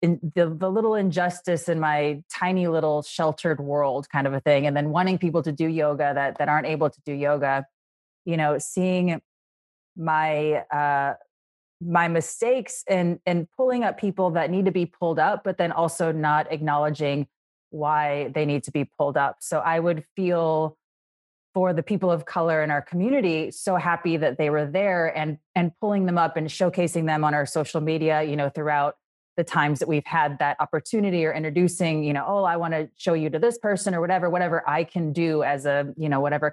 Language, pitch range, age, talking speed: English, 150-180 Hz, 30-49, 200 wpm